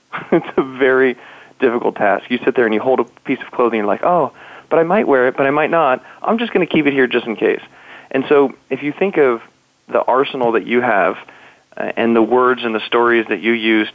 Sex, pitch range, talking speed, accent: male, 110-130 Hz, 250 wpm, American